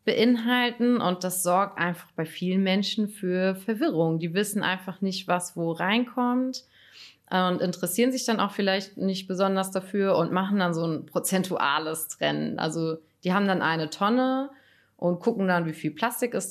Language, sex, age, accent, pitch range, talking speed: German, female, 30-49, German, 155-190 Hz, 165 wpm